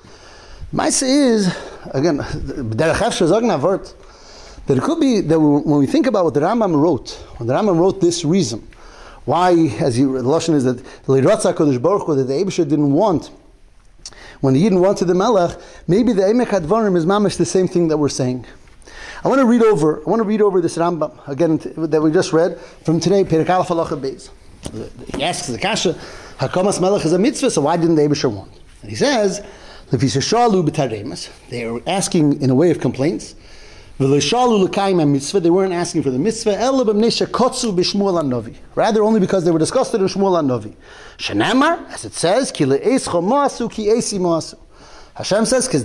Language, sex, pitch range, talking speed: English, male, 145-210 Hz, 160 wpm